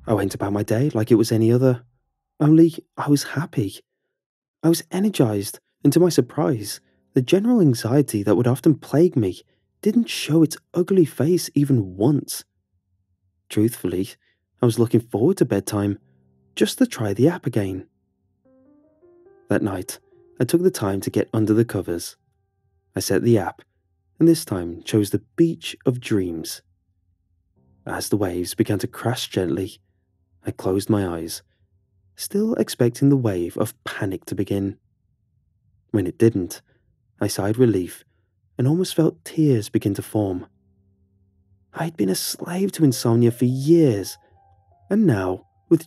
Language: English